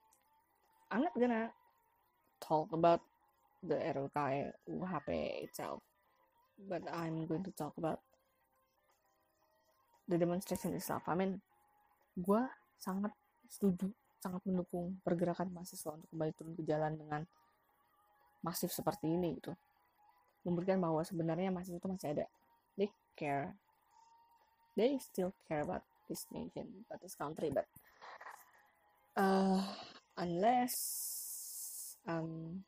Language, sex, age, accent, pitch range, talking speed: Indonesian, female, 20-39, native, 170-230 Hz, 105 wpm